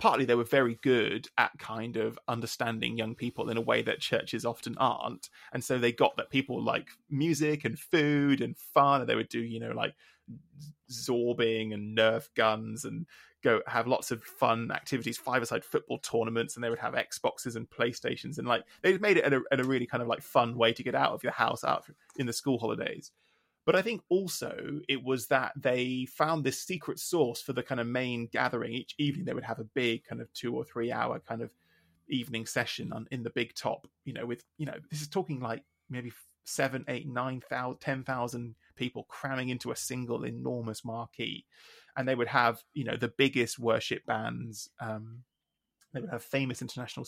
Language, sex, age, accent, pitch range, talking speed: English, male, 20-39, British, 115-140 Hz, 210 wpm